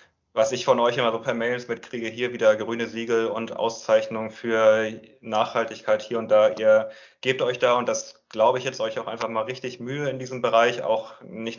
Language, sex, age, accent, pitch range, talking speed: German, male, 20-39, German, 110-135 Hz, 205 wpm